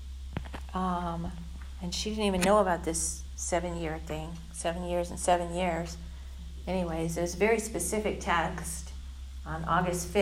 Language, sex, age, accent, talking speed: English, female, 50-69, American, 140 wpm